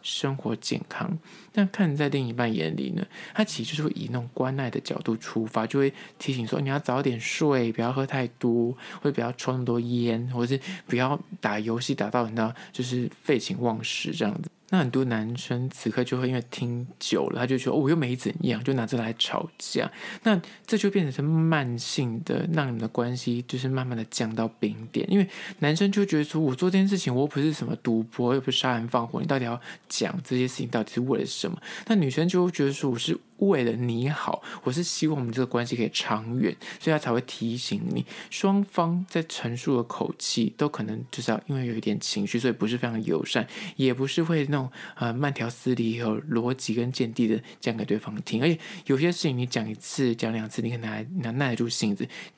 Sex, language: male, Chinese